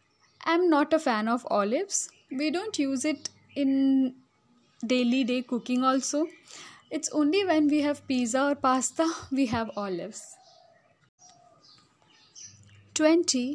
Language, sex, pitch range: English, female, 245-305 Hz